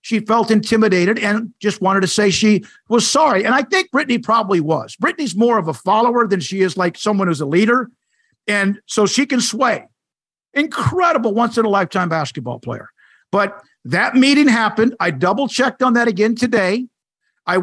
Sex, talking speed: male, 185 wpm